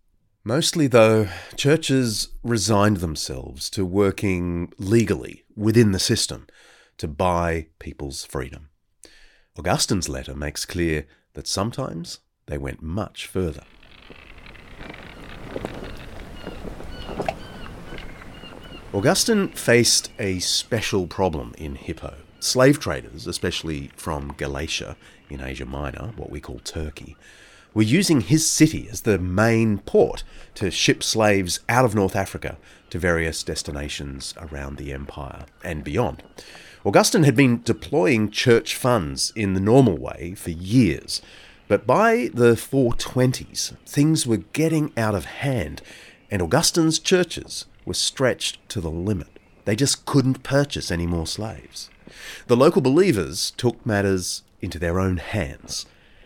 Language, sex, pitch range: English, male, 80-120 Hz